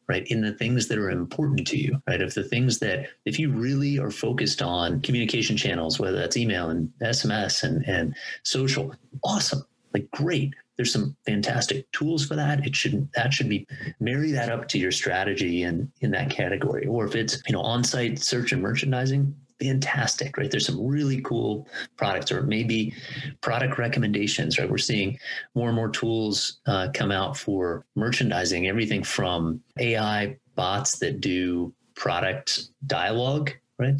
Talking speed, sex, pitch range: 170 wpm, male, 110-140 Hz